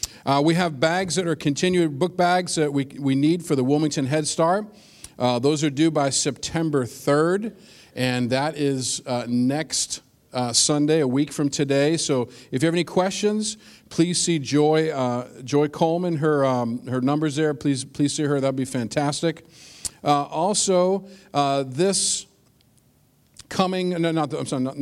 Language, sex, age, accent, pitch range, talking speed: English, male, 50-69, American, 140-165 Hz, 170 wpm